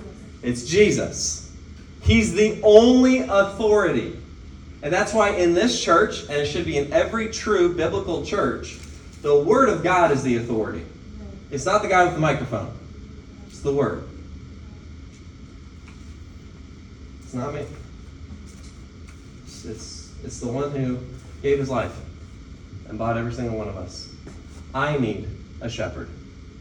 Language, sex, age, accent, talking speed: English, male, 30-49, American, 135 wpm